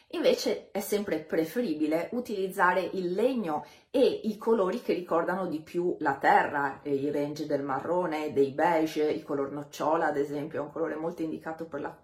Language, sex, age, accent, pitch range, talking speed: Italian, female, 30-49, native, 155-210 Hz, 160 wpm